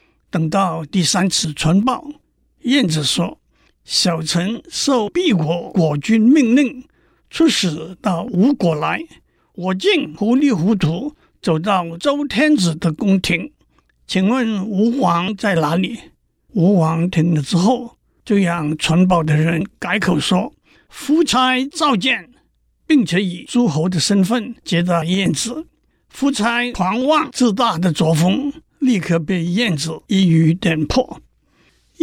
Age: 60-79